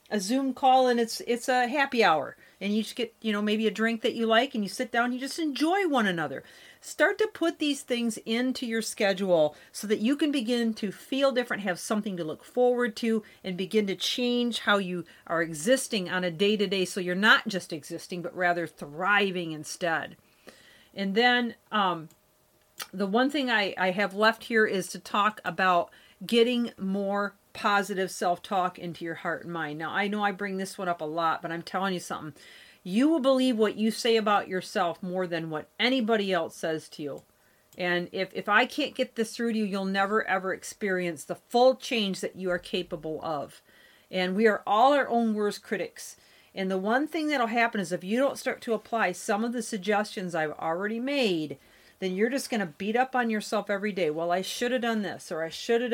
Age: 40-59